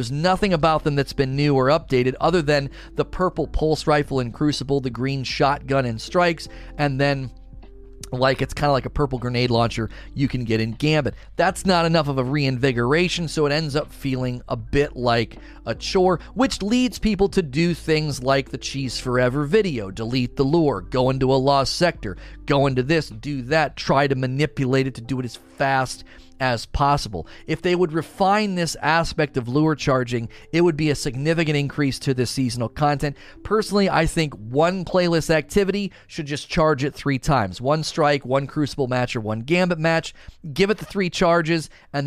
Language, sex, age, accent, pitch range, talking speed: English, male, 40-59, American, 125-155 Hz, 195 wpm